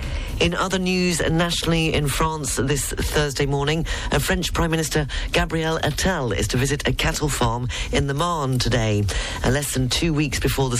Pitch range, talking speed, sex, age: 120-150 Hz, 170 wpm, female, 40-59